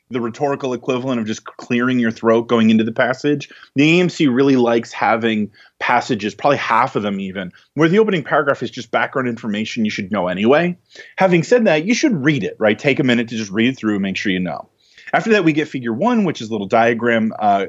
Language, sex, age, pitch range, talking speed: English, male, 30-49, 110-165 Hz, 230 wpm